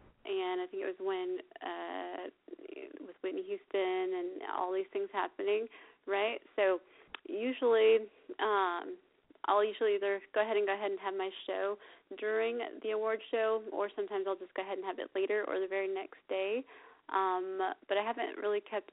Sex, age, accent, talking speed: female, 20-39, American, 180 wpm